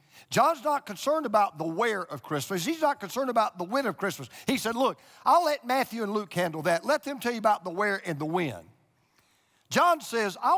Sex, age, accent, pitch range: male, 50-69, American, 155-235 Hz